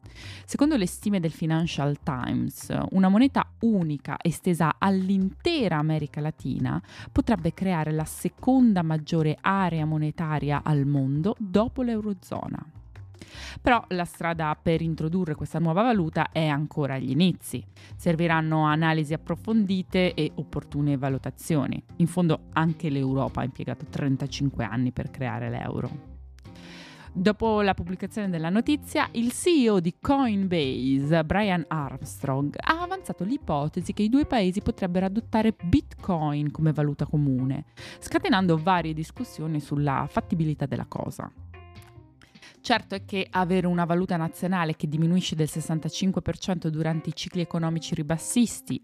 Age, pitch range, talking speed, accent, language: 20-39, 145-190 Hz, 125 wpm, native, Italian